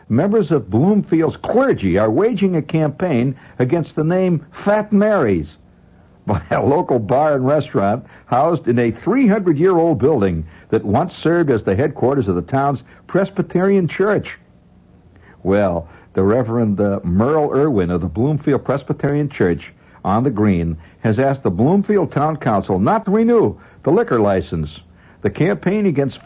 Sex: male